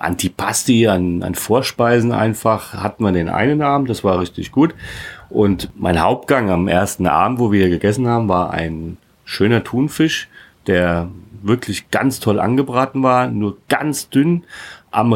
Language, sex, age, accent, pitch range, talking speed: German, male, 40-59, German, 95-125 Hz, 150 wpm